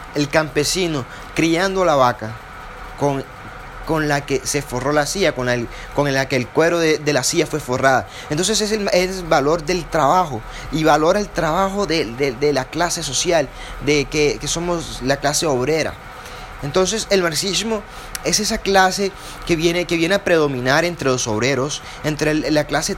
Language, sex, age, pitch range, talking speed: Spanish, male, 30-49, 135-170 Hz, 185 wpm